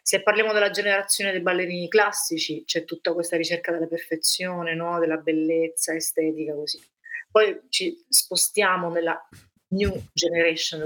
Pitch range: 170-205 Hz